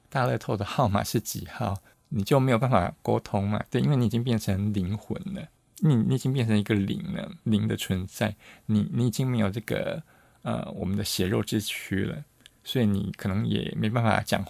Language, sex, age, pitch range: Chinese, male, 20-39, 105-135 Hz